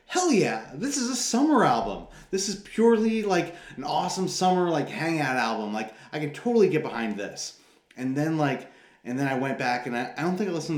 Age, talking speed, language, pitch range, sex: 30-49, 215 wpm, English, 110-165 Hz, male